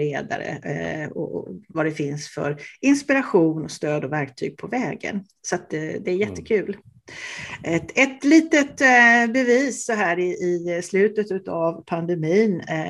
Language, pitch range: English, 160-215 Hz